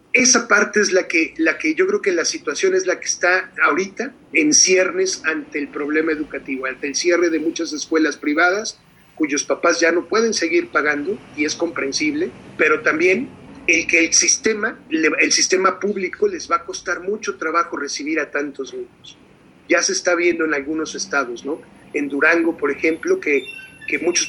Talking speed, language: 185 wpm, Spanish